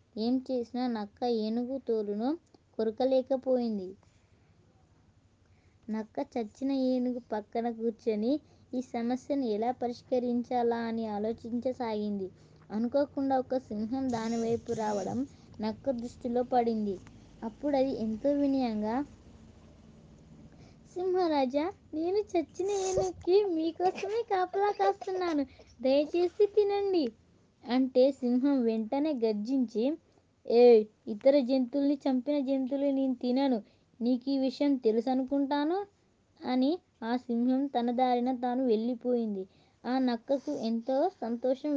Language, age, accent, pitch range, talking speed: Telugu, 20-39, native, 230-280 Hz, 95 wpm